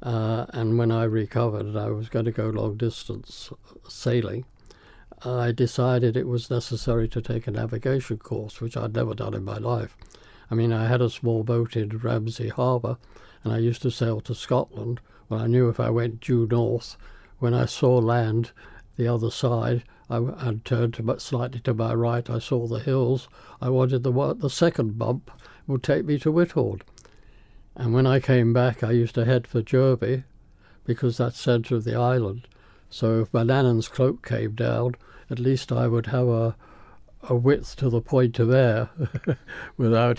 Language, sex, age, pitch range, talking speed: English, male, 60-79, 115-130 Hz, 185 wpm